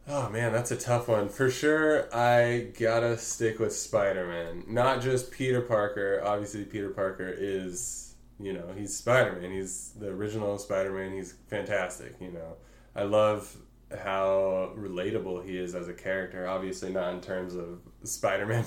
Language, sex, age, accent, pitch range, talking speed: English, male, 20-39, American, 90-105 Hz, 155 wpm